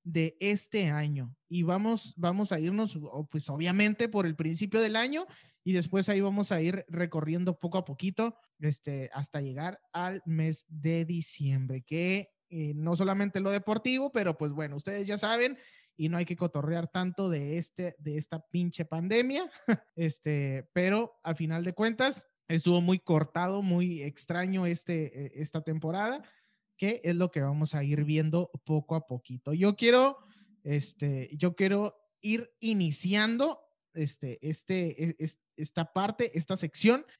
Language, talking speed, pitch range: Spanish, 155 wpm, 155-210 Hz